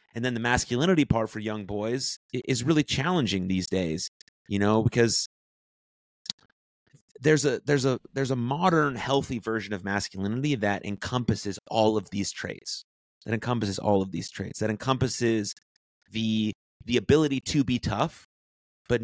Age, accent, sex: 30-49, American, male